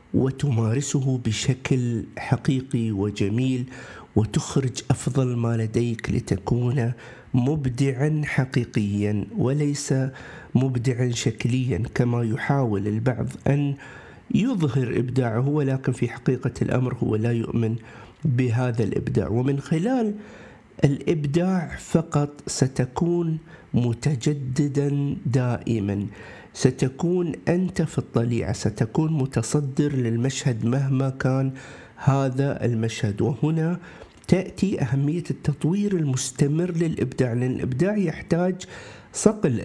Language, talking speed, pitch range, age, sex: Arabic, 85 wpm, 120-150 Hz, 50-69, male